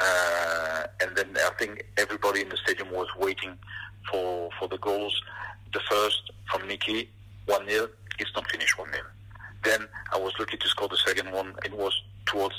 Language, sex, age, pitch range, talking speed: English, male, 50-69, 95-105 Hz, 180 wpm